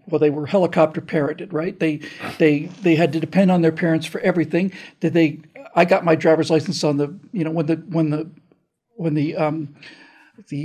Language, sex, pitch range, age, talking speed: English, male, 165-210 Hz, 50-69, 205 wpm